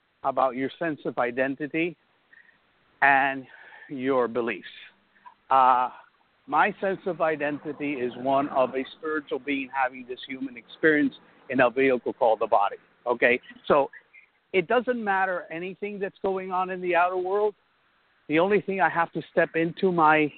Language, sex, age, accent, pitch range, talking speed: English, male, 60-79, American, 150-195 Hz, 150 wpm